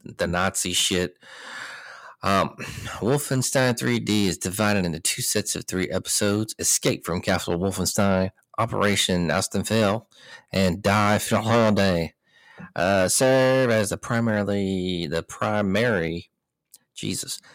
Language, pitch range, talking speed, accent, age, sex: English, 90-110 Hz, 115 wpm, American, 40-59, male